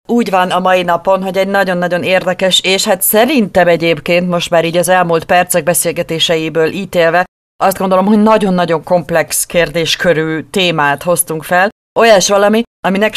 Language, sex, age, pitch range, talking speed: Hungarian, female, 40-59, 160-205 Hz, 155 wpm